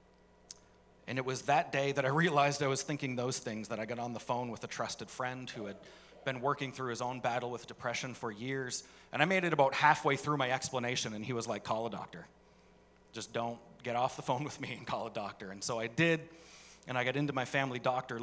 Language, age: English, 30-49